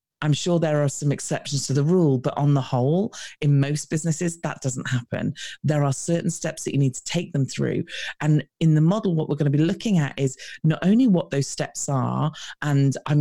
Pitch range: 135-170 Hz